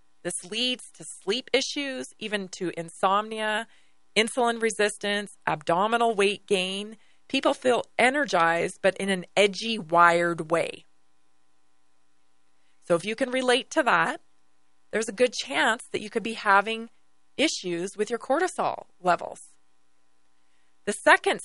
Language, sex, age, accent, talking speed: English, female, 30-49, American, 125 wpm